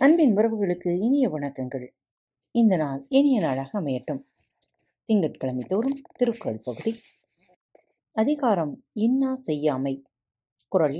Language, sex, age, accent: Tamil, female, 30-49, native